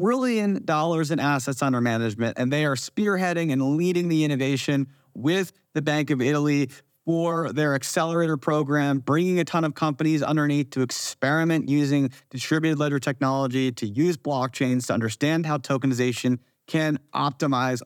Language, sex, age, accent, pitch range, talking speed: English, male, 30-49, American, 130-155 Hz, 150 wpm